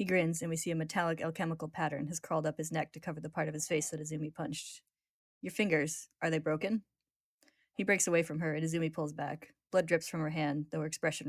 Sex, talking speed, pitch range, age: female, 245 wpm, 155-170 Hz, 10-29